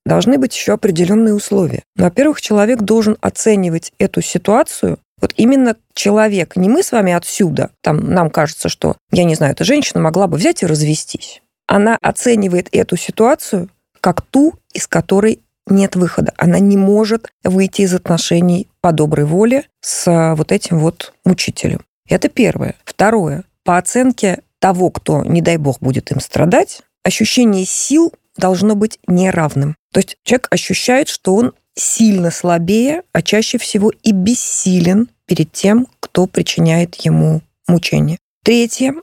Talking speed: 145 wpm